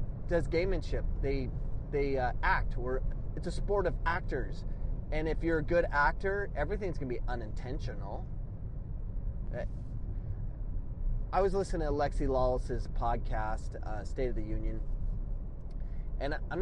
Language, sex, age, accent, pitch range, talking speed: English, male, 30-49, American, 110-145 Hz, 130 wpm